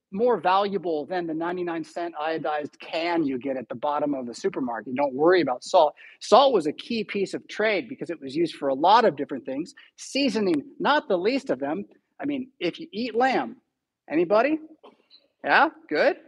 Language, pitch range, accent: English, 170-260 Hz, American